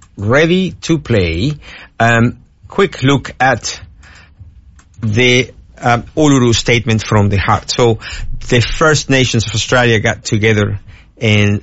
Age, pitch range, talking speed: 50-69, 100-120 Hz, 120 wpm